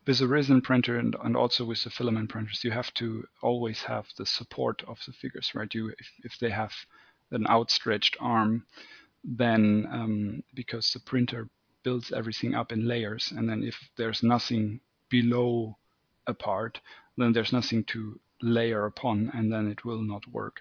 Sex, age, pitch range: male, 40-59, 110-125 Hz